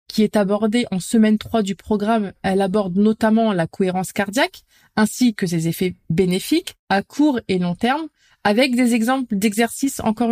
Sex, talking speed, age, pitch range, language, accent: female, 170 wpm, 30-49, 200-255 Hz, French, French